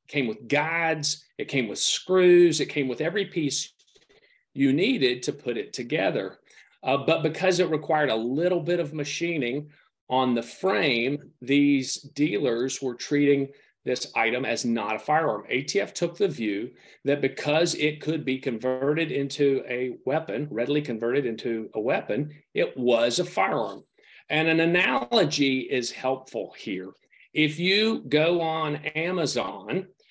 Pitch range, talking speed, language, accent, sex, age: 130-175 Hz, 150 wpm, English, American, male, 40-59